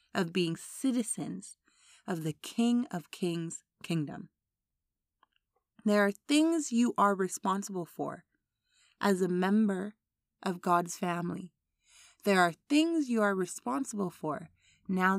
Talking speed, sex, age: 120 wpm, female, 20-39